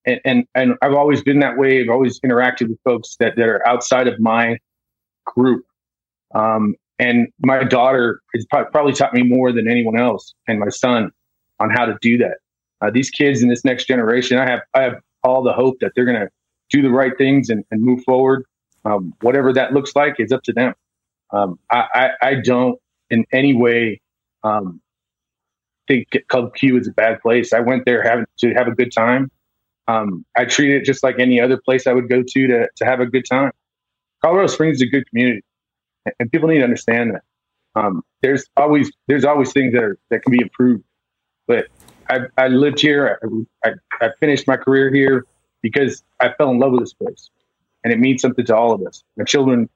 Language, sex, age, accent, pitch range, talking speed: English, male, 30-49, American, 115-135 Hz, 210 wpm